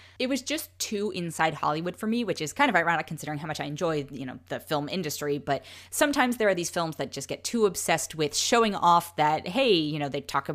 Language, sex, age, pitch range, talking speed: English, female, 10-29, 150-185 Hz, 245 wpm